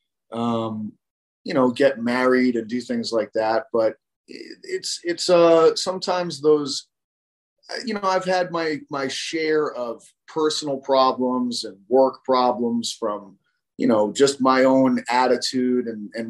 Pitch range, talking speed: 120-155 Hz, 140 wpm